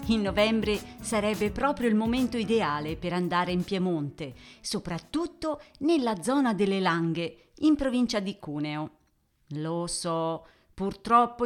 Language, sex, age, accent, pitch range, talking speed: Italian, female, 40-59, native, 165-230 Hz, 120 wpm